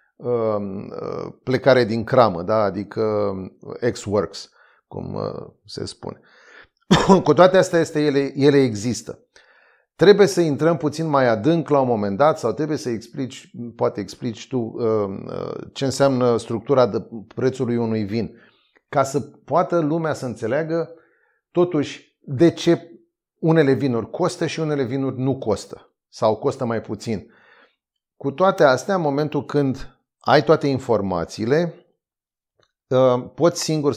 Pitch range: 115-150 Hz